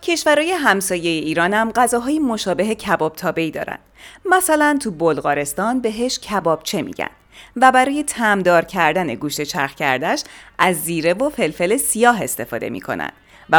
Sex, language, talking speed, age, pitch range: female, Persian, 135 wpm, 30-49, 155-230 Hz